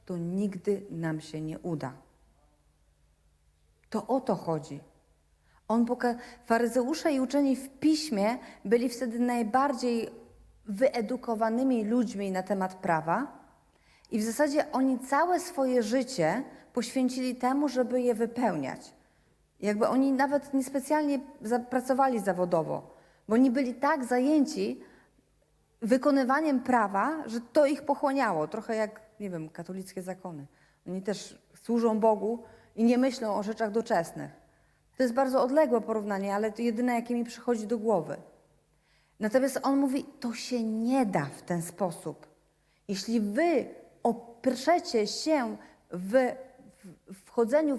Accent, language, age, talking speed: native, Polish, 40-59, 125 wpm